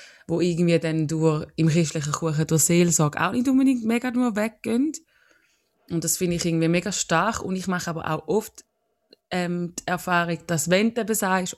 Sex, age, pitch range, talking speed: female, 20-39, 160-190 Hz, 180 wpm